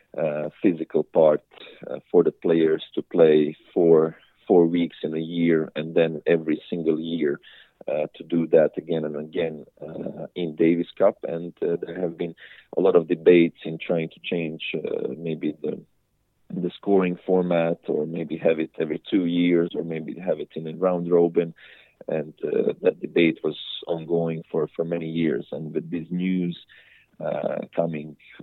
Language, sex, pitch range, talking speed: English, male, 80-95 Hz, 170 wpm